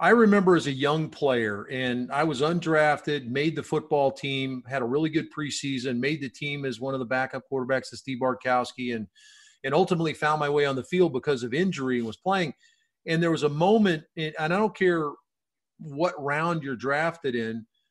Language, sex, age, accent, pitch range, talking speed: English, male, 40-59, American, 135-170 Hz, 200 wpm